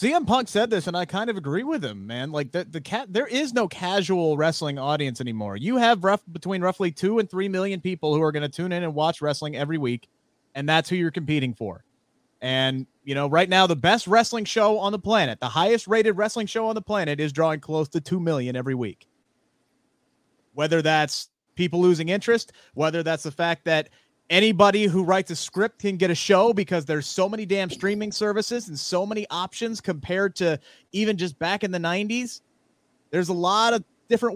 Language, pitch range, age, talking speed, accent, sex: English, 145-200 Hz, 30-49, 210 wpm, American, male